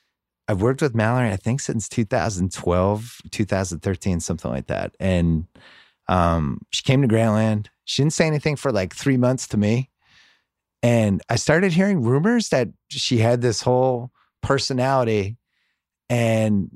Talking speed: 145 wpm